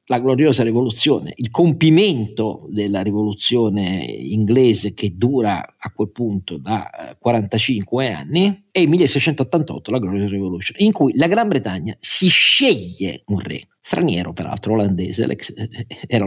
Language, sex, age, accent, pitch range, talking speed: Italian, male, 50-69, native, 105-155 Hz, 130 wpm